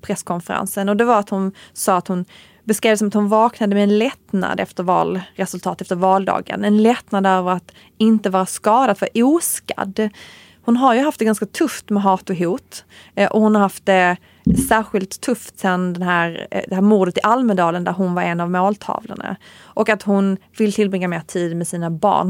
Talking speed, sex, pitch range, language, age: 200 wpm, female, 185-220 Hz, English, 30-49